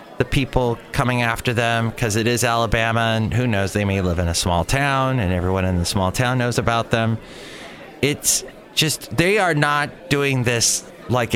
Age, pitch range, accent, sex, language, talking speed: 30-49, 110-140 Hz, American, male, English, 190 wpm